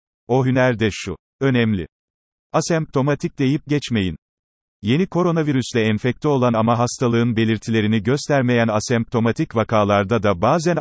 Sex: male